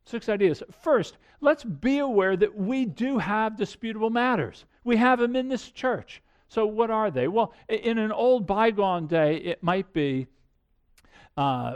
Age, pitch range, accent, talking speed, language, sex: 50-69, 150-220 Hz, American, 165 wpm, English, male